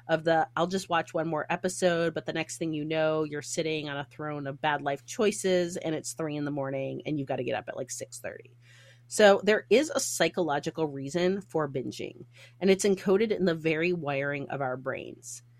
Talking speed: 215 wpm